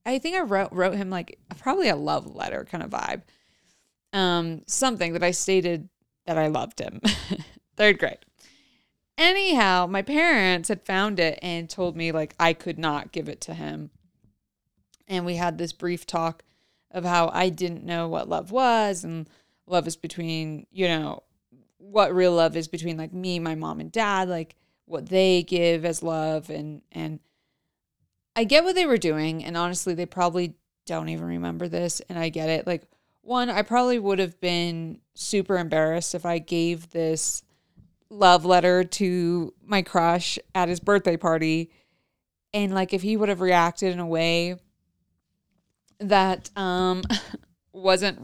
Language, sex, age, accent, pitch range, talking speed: English, female, 30-49, American, 165-190 Hz, 165 wpm